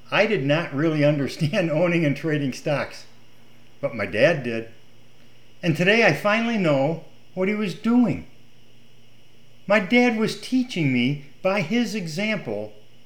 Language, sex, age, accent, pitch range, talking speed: English, male, 50-69, American, 125-190 Hz, 140 wpm